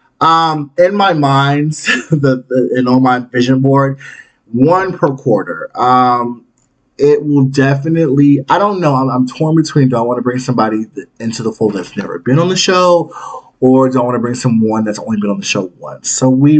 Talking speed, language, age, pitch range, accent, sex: 205 wpm, English, 20-39, 130-165 Hz, American, male